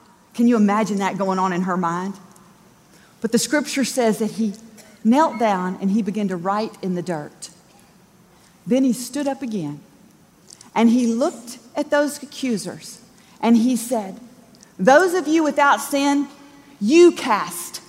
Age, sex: 40-59, female